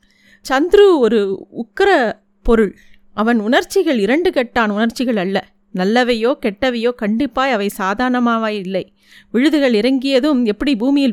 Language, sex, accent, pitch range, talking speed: Tamil, female, native, 220-275 Hz, 110 wpm